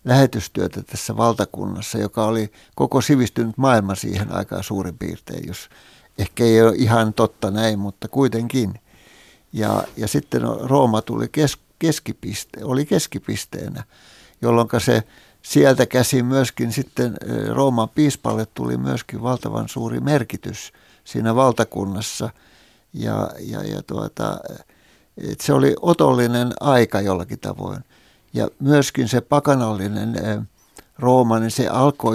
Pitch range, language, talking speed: 105-125 Hz, Finnish, 110 wpm